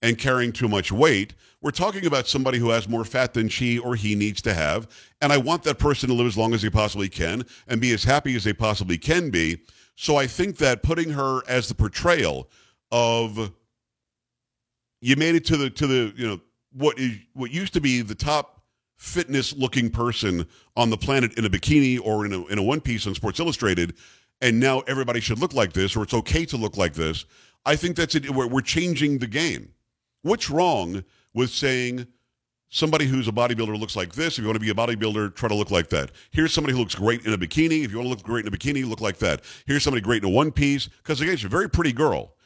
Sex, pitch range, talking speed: male, 110-140 Hz, 235 wpm